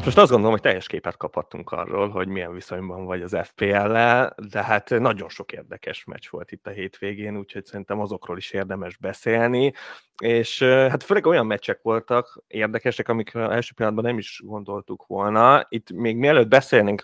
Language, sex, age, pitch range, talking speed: Hungarian, male, 20-39, 100-125 Hz, 170 wpm